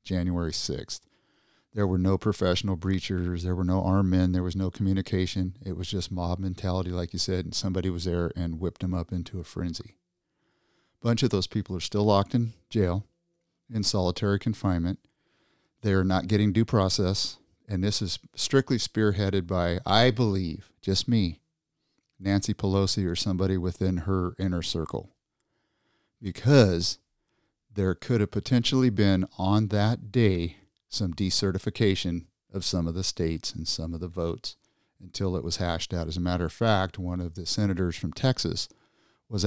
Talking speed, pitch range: 165 wpm, 90-105 Hz